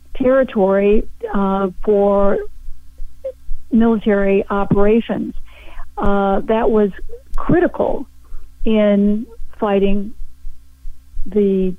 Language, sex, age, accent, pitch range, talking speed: English, female, 50-69, American, 195-220 Hz, 60 wpm